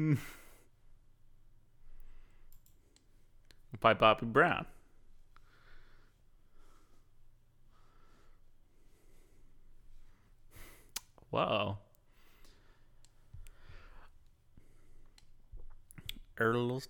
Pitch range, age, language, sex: 110-160 Hz, 30-49, English, male